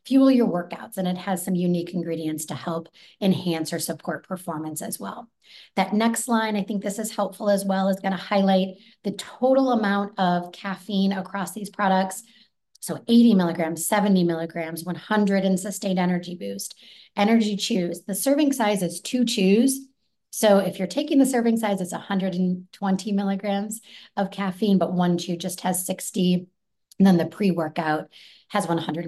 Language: English